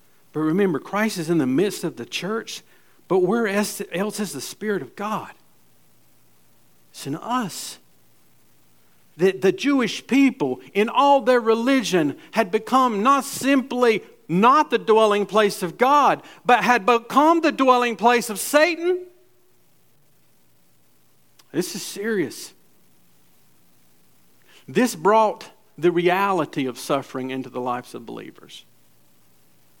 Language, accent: English, American